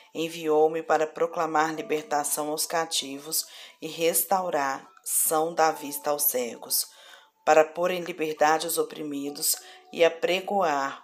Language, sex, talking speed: Portuguese, female, 115 wpm